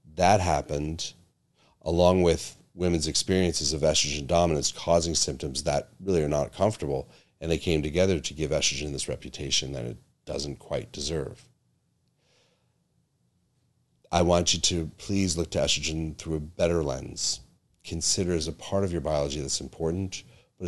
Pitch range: 70-85 Hz